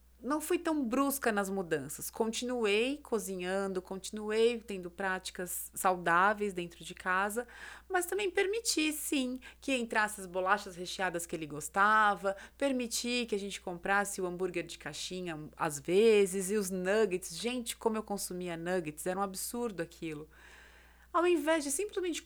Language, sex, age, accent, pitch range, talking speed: Portuguese, female, 30-49, Brazilian, 185-275 Hz, 145 wpm